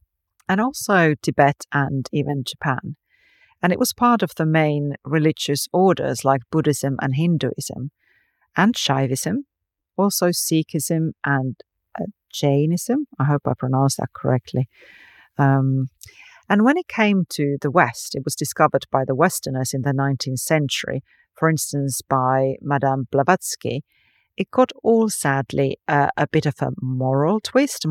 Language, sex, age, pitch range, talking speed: English, female, 40-59, 135-170 Hz, 140 wpm